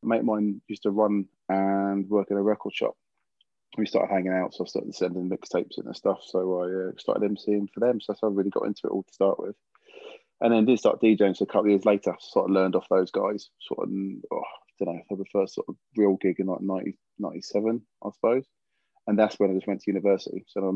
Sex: male